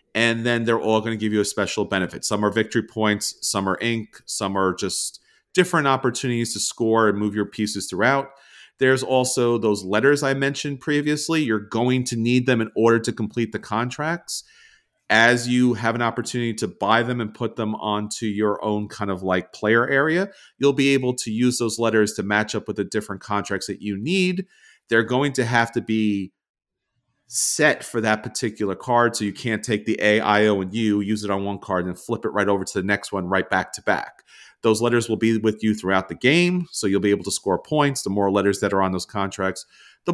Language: English